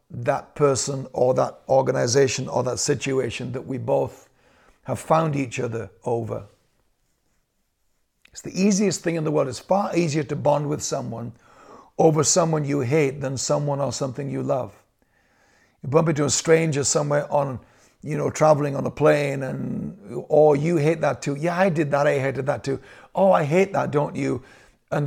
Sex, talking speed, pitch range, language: male, 175 wpm, 130-155 Hz, English